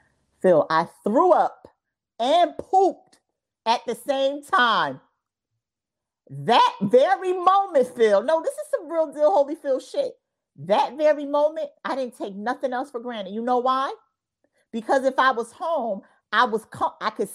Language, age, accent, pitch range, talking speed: English, 40-59, American, 205-290 Hz, 150 wpm